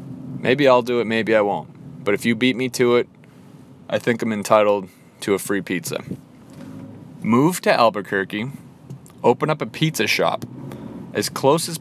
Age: 20-39